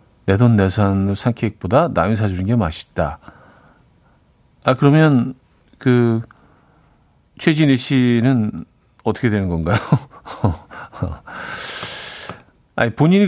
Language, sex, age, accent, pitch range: Korean, male, 50-69, native, 100-140 Hz